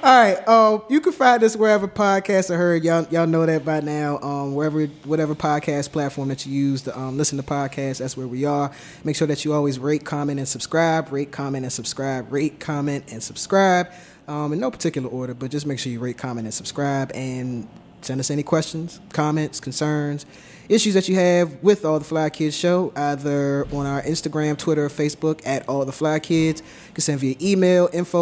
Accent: American